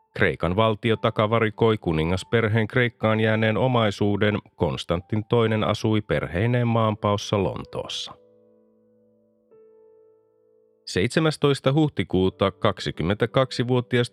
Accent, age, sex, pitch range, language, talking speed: native, 30-49, male, 105-125 Hz, Finnish, 70 wpm